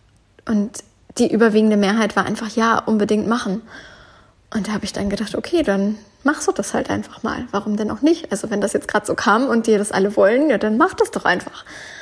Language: German